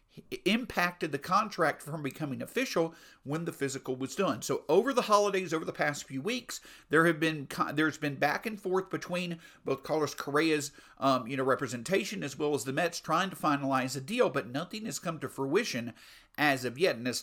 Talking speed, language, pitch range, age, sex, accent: 200 wpm, English, 145-195 Hz, 50-69, male, American